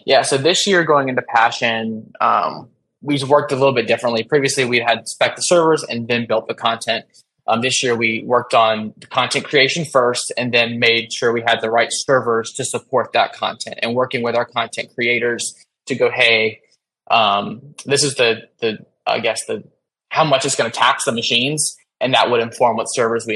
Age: 20-39